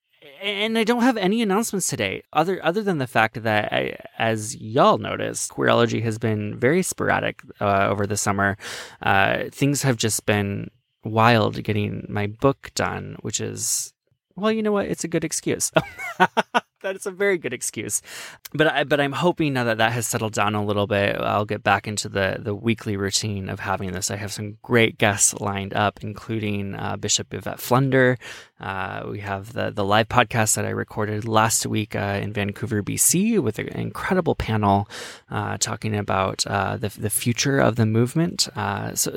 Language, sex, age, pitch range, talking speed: English, male, 20-39, 105-150 Hz, 185 wpm